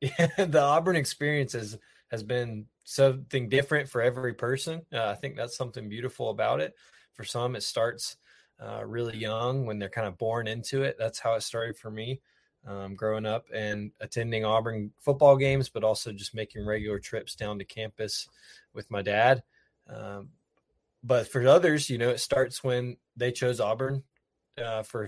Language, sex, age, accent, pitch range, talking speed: English, male, 20-39, American, 110-135 Hz, 170 wpm